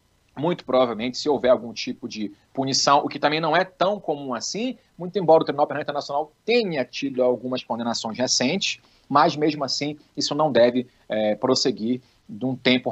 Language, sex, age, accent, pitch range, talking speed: Portuguese, male, 40-59, Brazilian, 135-185 Hz, 170 wpm